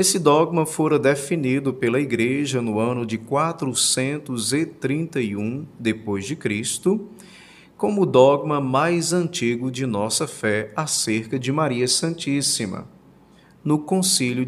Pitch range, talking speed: 115-155 Hz, 105 wpm